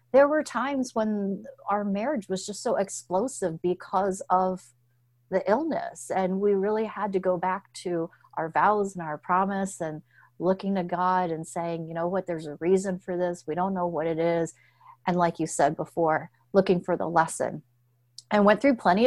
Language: English